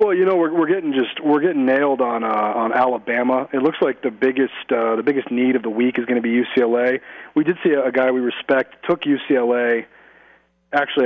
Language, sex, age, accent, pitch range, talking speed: English, male, 30-49, American, 125-175 Hz, 220 wpm